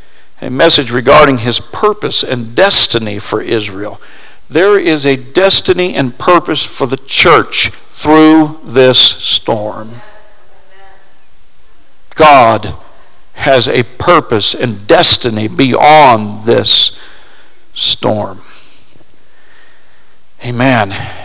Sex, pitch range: male, 120-160 Hz